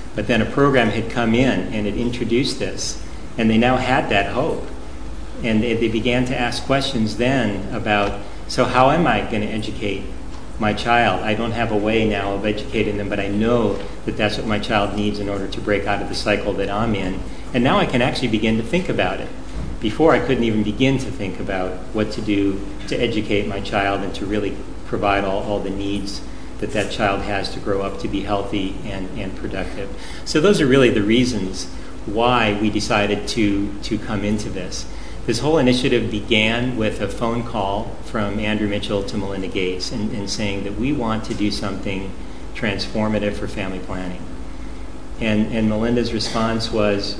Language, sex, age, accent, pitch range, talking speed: English, male, 40-59, American, 100-115 Hz, 195 wpm